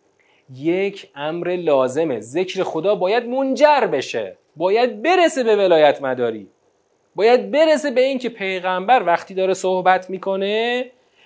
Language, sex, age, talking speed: Persian, male, 30-49, 115 wpm